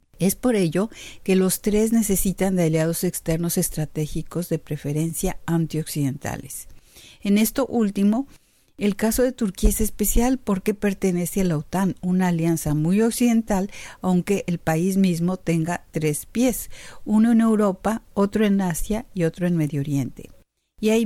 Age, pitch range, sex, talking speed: 50-69, 165-205 Hz, female, 150 wpm